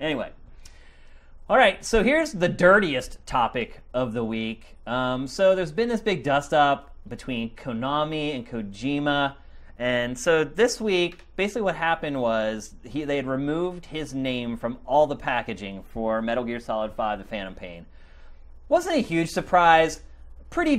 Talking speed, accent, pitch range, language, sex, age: 150 wpm, American, 110-180 Hz, English, male, 30-49